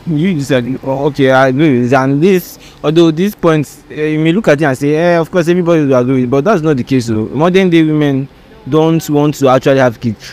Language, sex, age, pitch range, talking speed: English, male, 20-39, 135-175 Hz, 240 wpm